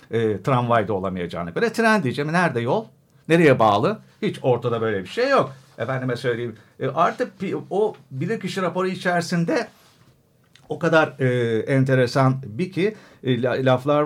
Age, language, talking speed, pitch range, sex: 50-69, Turkish, 130 wpm, 130-195 Hz, male